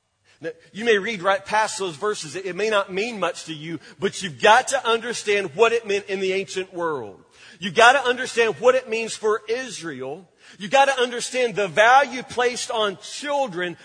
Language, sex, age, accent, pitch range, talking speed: English, male, 40-59, American, 185-250 Hz, 190 wpm